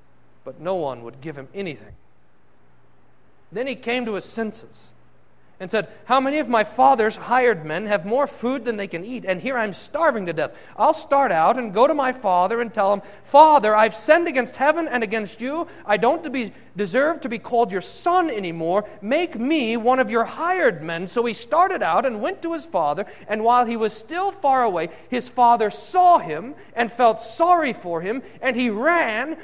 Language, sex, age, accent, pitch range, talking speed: English, male, 40-59, American, 200-290 Hz, 200 wpm